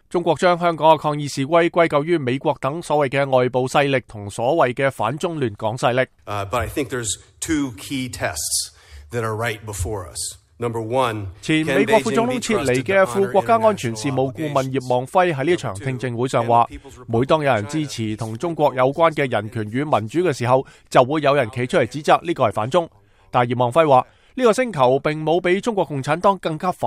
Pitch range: 125-165 Hz